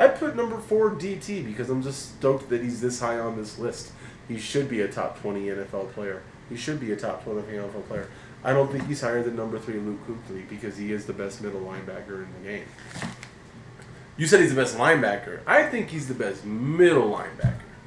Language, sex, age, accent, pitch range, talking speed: English, male, 20-39, American, 105-130 Hz, 220 wpm